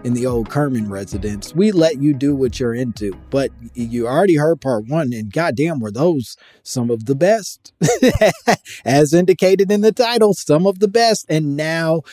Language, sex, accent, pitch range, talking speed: English, male, American, 110-145 Hz, 185 wpm